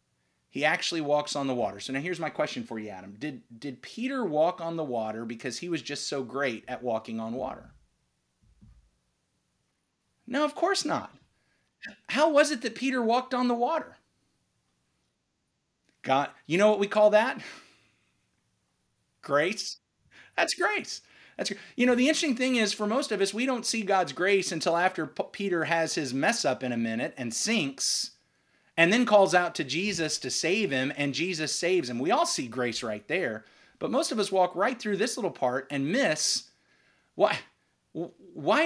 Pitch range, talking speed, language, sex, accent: 135-225 Hz, 180 wpm, English, male, American